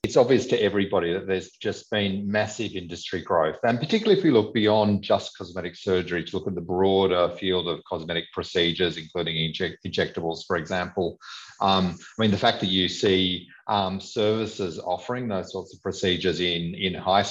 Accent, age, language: Australian, 40-59, English